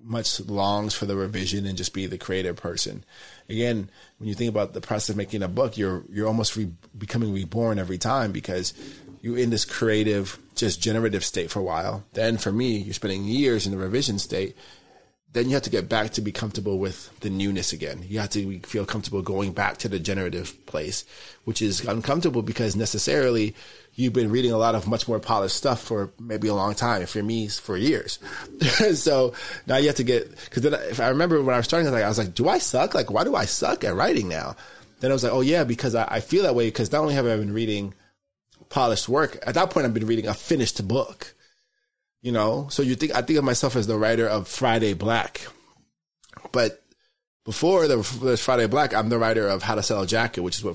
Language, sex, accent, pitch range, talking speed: English, male, American, 100-120 Hz, 225 wpm